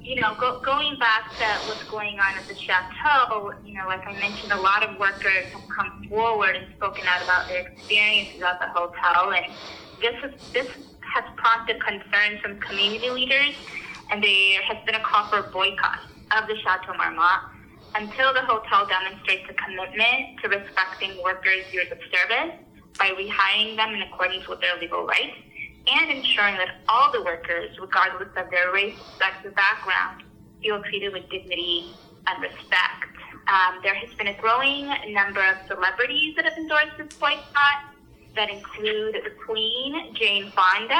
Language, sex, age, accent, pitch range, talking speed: English, female, 20-39, American, 195-235 Hz, 170 wpm